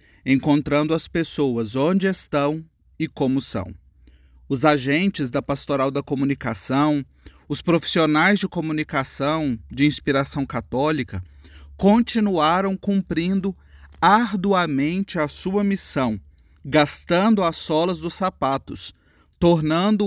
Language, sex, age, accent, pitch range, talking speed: Portuguese, male, 30-49, Brazilian, 135-170 Hz, 100 wpm